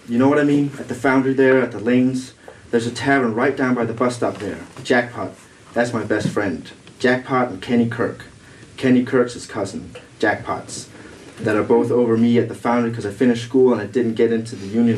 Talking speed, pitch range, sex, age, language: 220 wpm, 110-125 Hz, male, 30-49, English